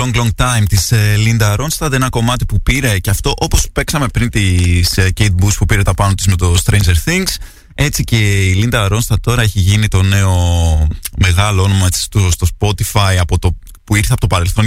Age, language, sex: 20-39, Greek, male